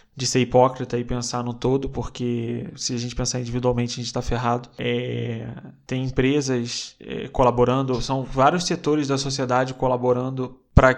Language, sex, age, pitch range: Portuguese, male, 20-39, 125-140 Hz